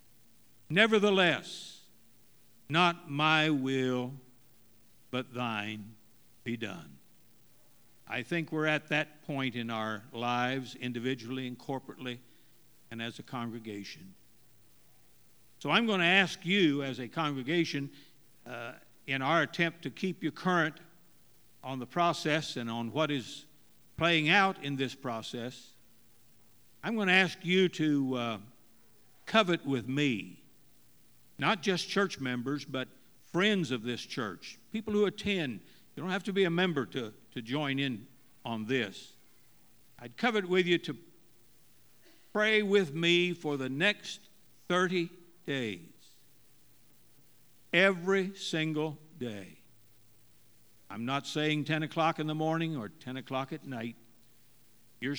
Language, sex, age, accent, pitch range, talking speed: English, male, 60-79, American, 120-165 Hz, 130 wpm